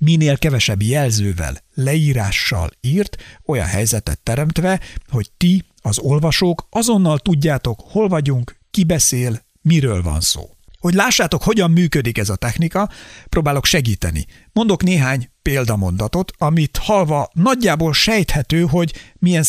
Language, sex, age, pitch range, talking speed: Hungarian, male, 60-79, 115-170 Hz, 120 wpm